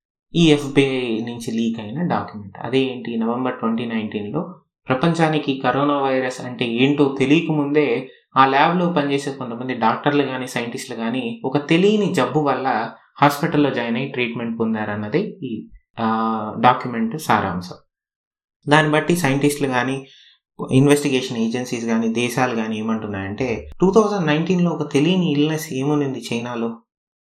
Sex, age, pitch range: male, 20-39, 115-145 Hz